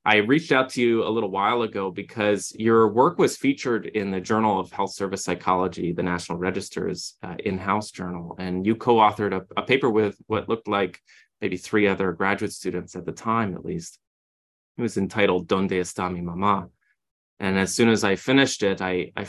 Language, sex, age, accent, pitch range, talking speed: English, male, 20-39, American, 90-105 Hz, 195 wpm